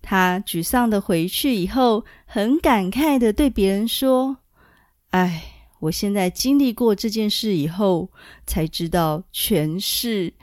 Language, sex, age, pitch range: Chinese, female, 30-49, 185-265 Hz